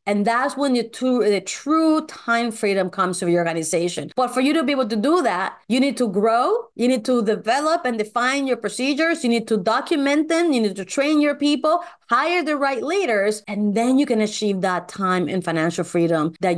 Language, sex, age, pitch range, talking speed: English, female, 30-49, 205-285 Hz, 210 wpm